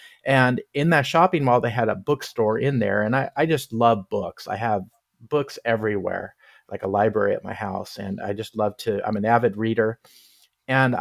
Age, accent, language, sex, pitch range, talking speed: 40-59, American, English, male, 115-145 Hz, 200 wpm